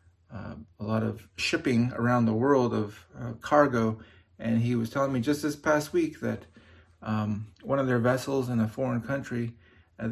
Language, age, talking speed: English, 30-49, 185 wpm